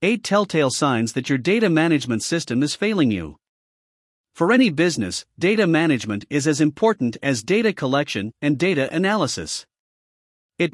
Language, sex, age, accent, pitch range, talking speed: English, male, 50-69, American, 125-175 Hz, 145 wpm